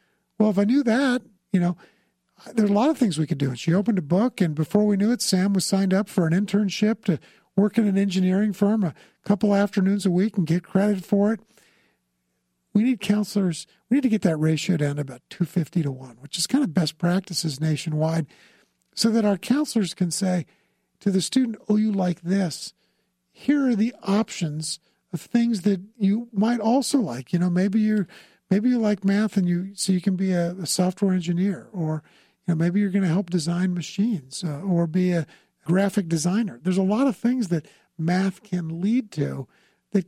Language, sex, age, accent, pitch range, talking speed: English, male, 50-69, American, 170-210 Hz, 210 wpm